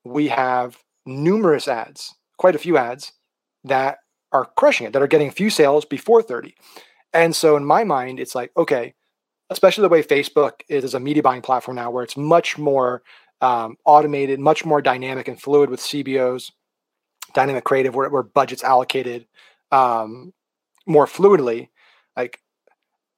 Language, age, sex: English, 30-49, male